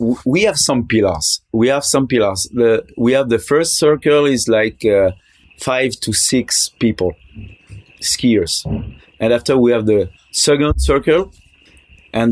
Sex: male